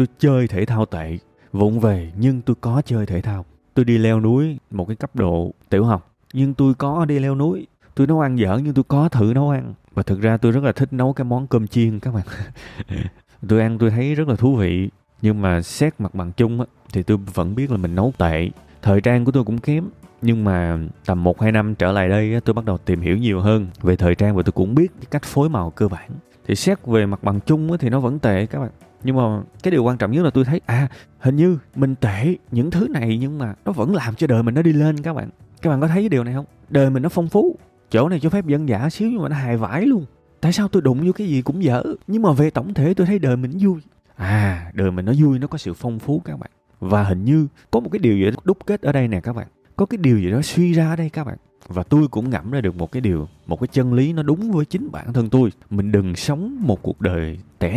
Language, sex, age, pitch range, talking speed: Vietnamese, male, 20-39, 100-145 Hz, 270 wpm